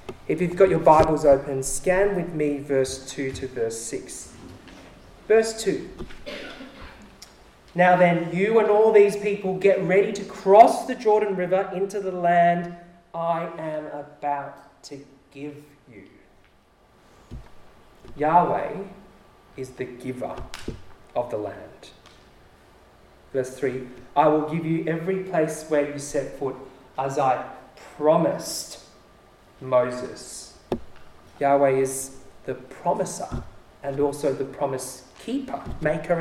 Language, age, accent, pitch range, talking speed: English, 30-49, Australian, 135-180 Hz, 120 wpm